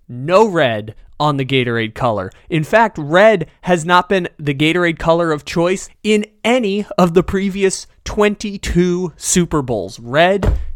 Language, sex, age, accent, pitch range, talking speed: English, male, 20-39, American, 135-180 Hz, 145 wpm